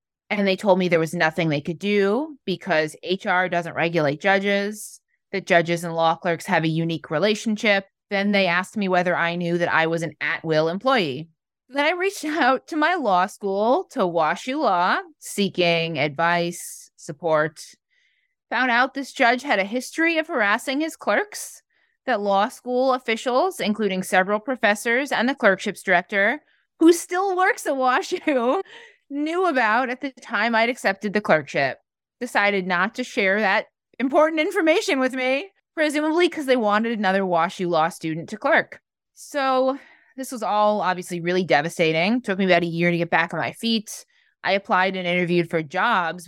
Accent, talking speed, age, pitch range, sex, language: American, 170 wpm, 20-39, 170-255 Hz, female, English